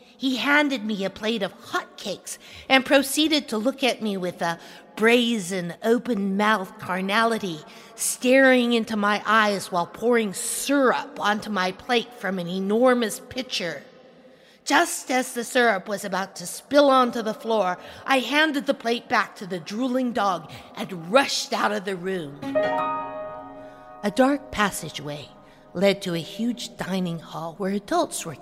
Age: 50-69